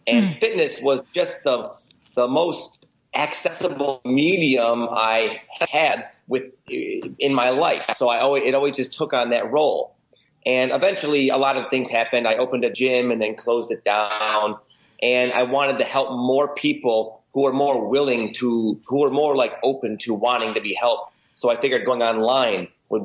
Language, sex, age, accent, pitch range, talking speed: English, male, 30-49, American, 120-150 Hz, 180 wpm